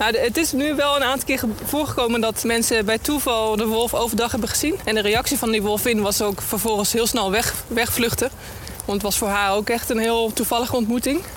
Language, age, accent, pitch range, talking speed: Dutch, 20-39, Dutch, 215-240 Hz, 220 wpm